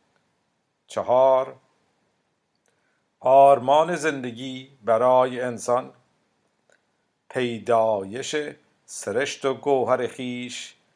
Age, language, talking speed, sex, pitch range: 50-69, Persian, 55 wpm, male, 110-130 Hz